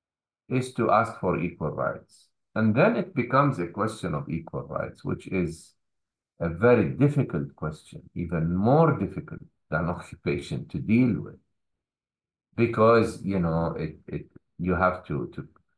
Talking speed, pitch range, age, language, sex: 135 wpm, 90-130 Hz, 50-69, English, male